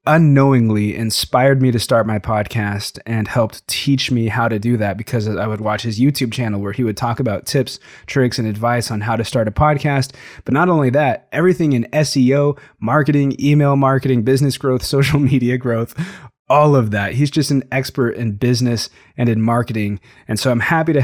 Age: 20-39